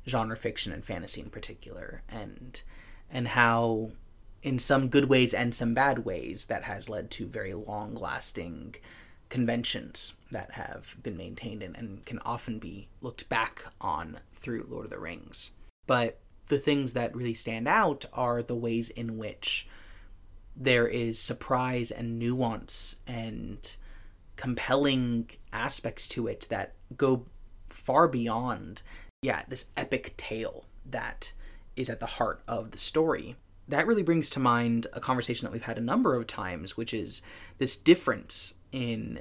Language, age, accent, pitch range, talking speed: English, 30-49, American, 100-125 Hz, 150 wpm